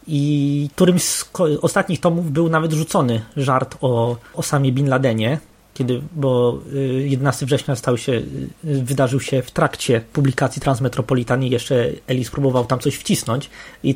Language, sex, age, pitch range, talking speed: Polish, male, 20-39, 130-155 Hz, 140 wpm